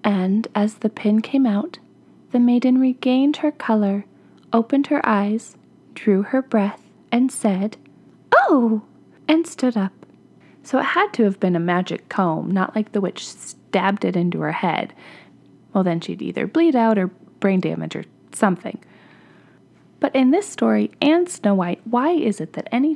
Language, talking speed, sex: English, 165 wpm, female